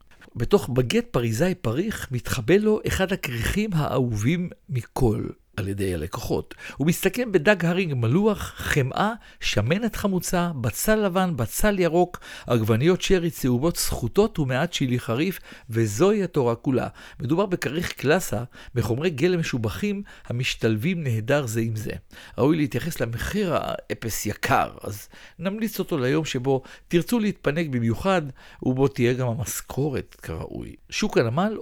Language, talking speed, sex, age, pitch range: Hebrew, 125 wpm, male, 50-69, 120-185 Hz